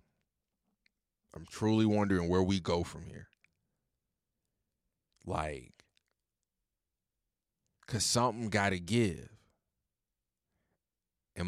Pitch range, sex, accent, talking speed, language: 90-125 Hz, male, American, 80 wpm, English